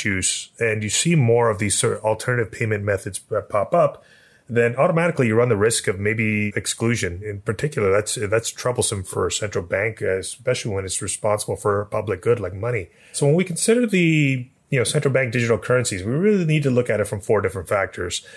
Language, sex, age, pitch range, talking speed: English, male, 30-49, 100-125 Hz, 210 wpm